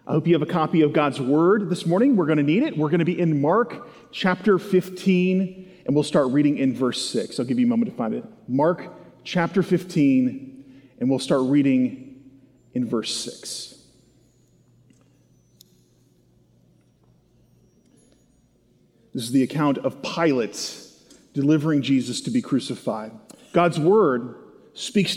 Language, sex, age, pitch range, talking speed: English, male, 40-59, 150-205 Hz, 150 wpm